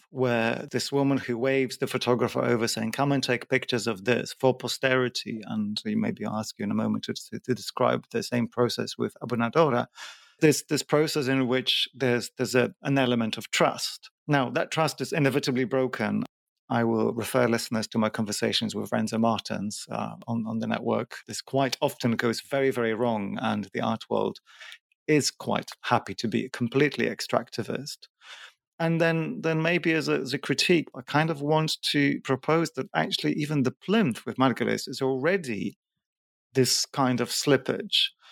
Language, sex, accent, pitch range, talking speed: English, male, British, 120-145 Hz, 175 wpm